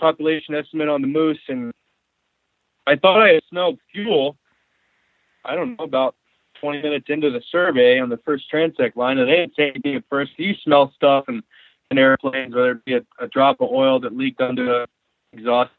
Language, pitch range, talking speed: English, 125-155 Hz, 200 wpm